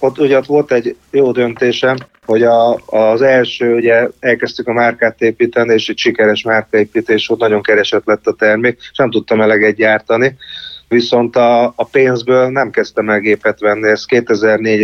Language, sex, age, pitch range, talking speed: Hungarian, male, 30-49, 105-125 Hz, 170 wpm